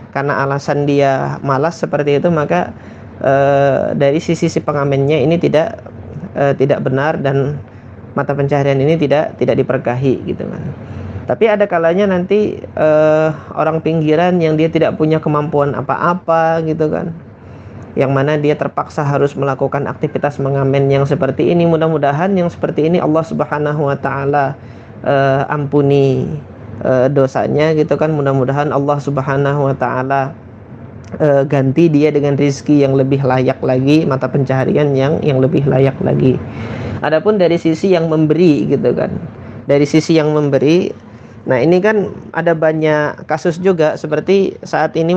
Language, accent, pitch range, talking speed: Indonesian, native, 135-155 Hz, 140 wpm